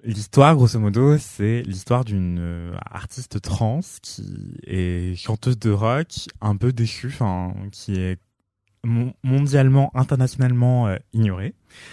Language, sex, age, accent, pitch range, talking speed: French, male, 20-39, French, 100-125 Hz, 115 wpm